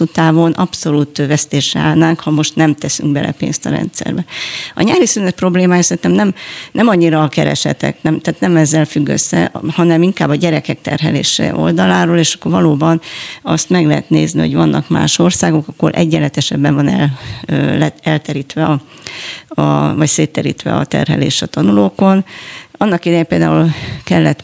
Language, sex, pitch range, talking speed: Hungarian, female, 140-160 Hz, 150 wpm